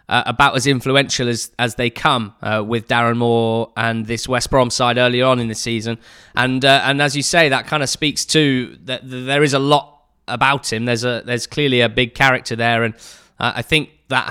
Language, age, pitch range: English, 20-39, 115-140 Hz